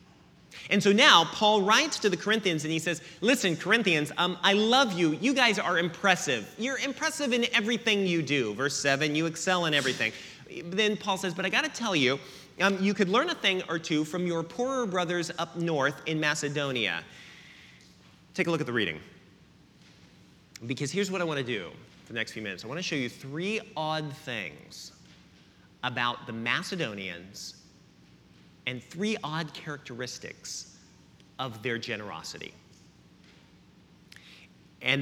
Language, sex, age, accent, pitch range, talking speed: English, male, 30-49, American, 130-195 Hz, 165 wpm